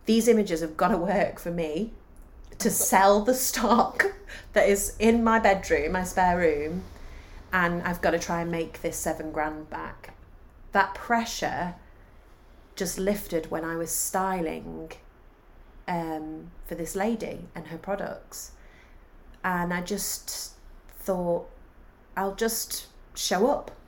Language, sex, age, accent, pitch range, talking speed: English, female, 30-49, British, 155-195 Hz, 135 wpm